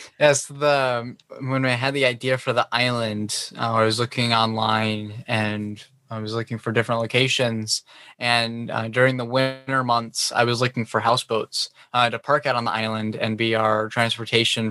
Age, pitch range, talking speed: 20-39, 110-125 Hz, 170 wpm